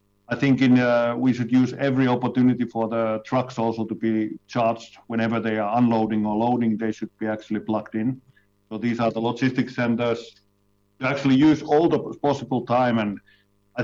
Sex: male